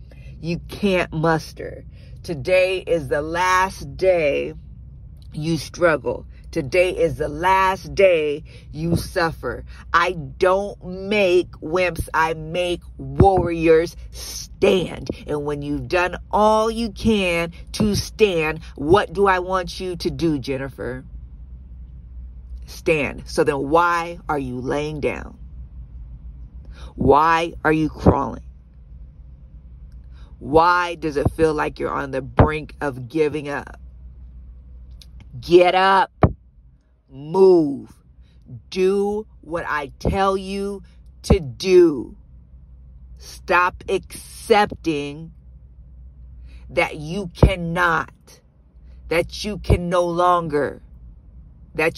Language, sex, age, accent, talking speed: English, female, 50-69, American, 100 wpm